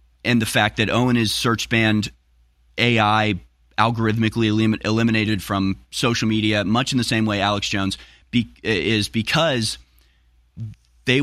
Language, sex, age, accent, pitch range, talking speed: English, male, 30-49, American, 80-115 Hz, 140 wpm